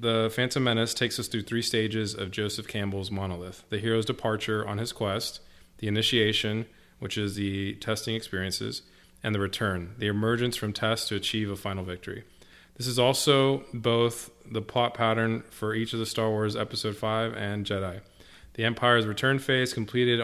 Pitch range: 100-115 Hz